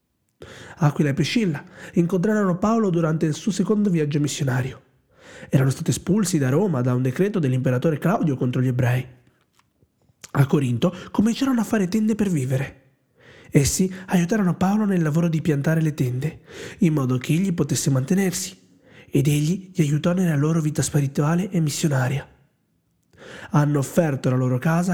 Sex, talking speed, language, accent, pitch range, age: male, 150 wpm, Italian, native, 135-180 Hz, 30-49